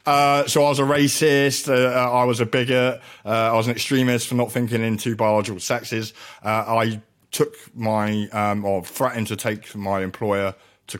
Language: English